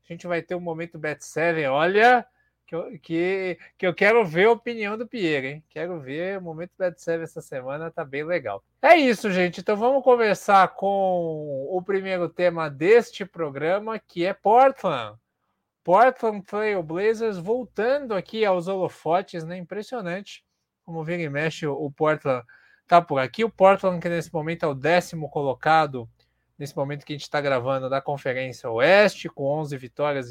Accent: Brazilian